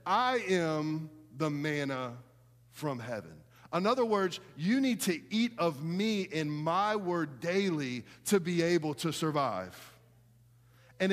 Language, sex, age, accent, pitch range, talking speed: English, male, 40-59, American, 135-200 Hz, 135 wpm